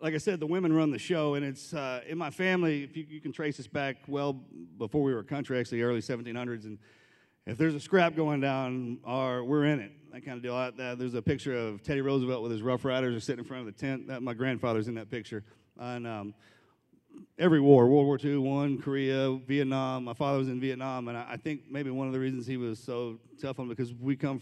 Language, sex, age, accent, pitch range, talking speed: English, male, 40-59, American, 120-140 Hz, 255 wpm